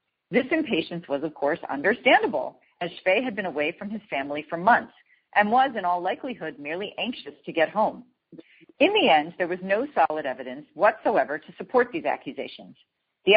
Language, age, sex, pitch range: English, 40-59, female, 160-245 Hz